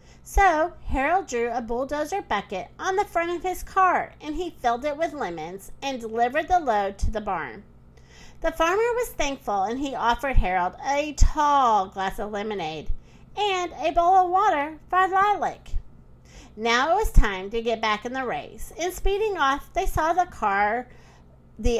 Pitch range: 215-360 Hz